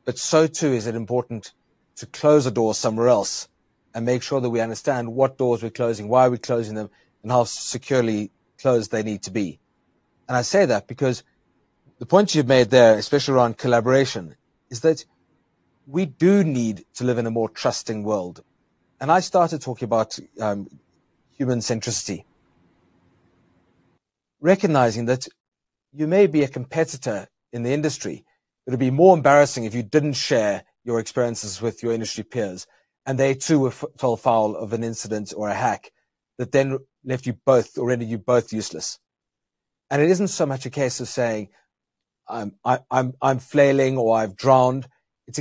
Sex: male